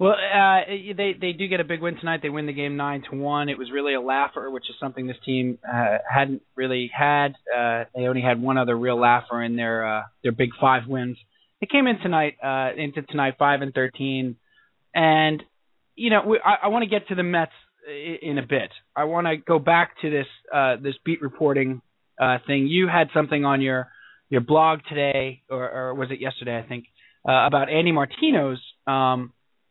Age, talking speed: 30-49, 210 wpm